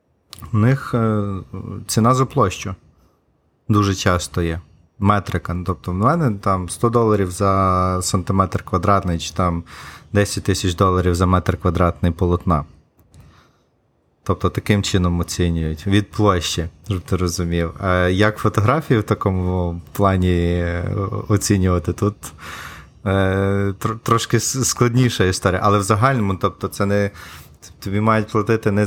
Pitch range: 90-110 Hz